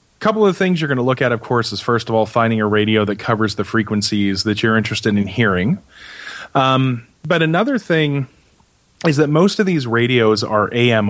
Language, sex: English, male